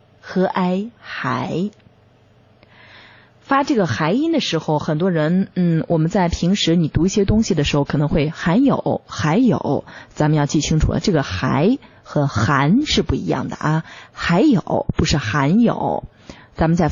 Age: 20-39